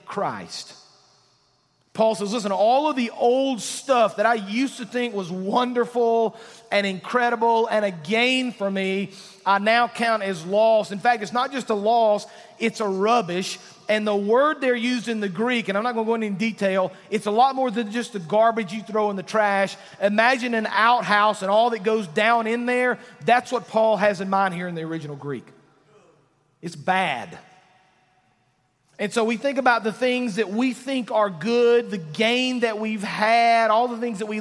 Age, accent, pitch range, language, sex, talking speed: 40-59, American, 170-230 Hz, English, male, 195 wpm